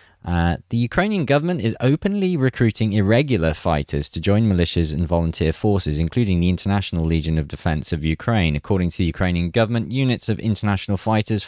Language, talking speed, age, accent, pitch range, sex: English, 165 wpm, 20-39, British, 85-115 Hz, male